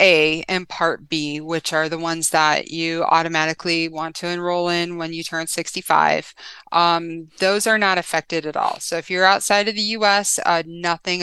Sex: female